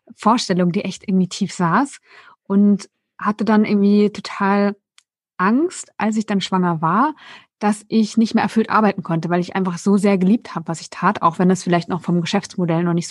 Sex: female